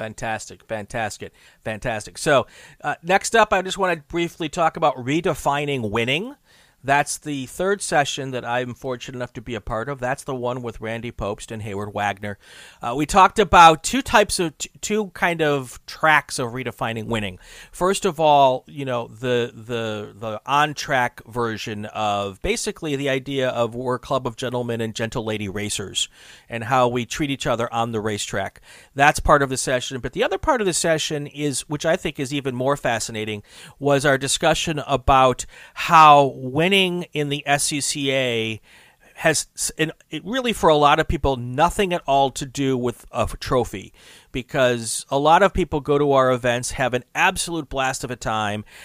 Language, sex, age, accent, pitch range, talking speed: English, male, 40-59, American, 120-150 Hz, 180 wpm